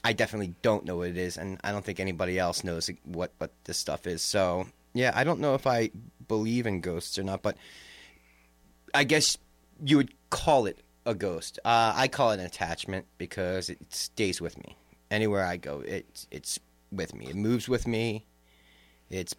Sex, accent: male, American